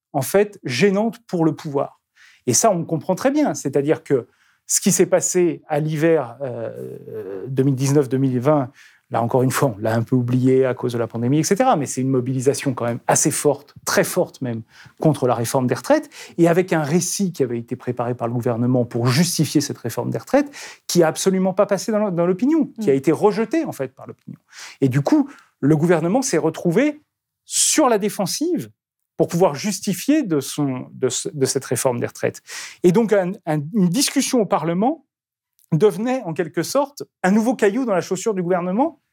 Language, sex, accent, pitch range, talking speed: French, male, French, 135-190 Hz, 195 wpm